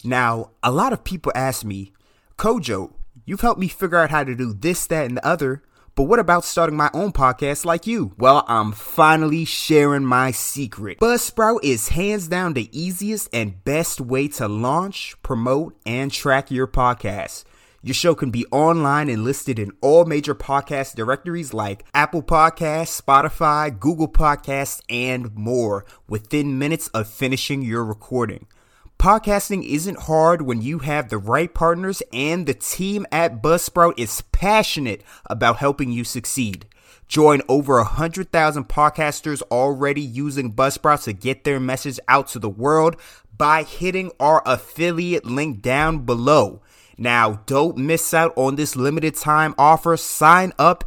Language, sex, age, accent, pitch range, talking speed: English, male, 30-49, American, 120-160 Hz, 155 wpm